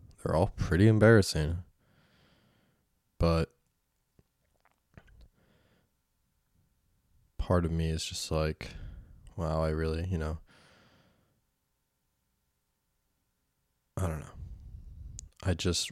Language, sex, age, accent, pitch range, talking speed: English, male, 20-39, American, 80-90 Hz, 80 wpm